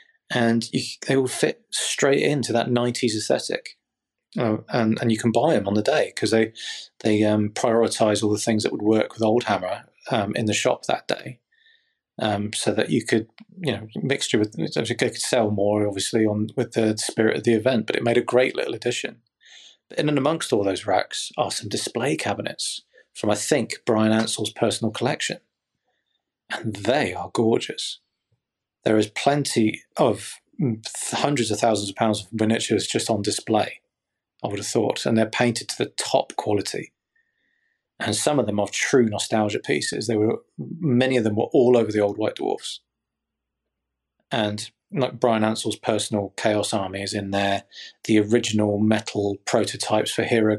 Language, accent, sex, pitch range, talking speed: English, British, male, 105-120 Hz, 180 wpm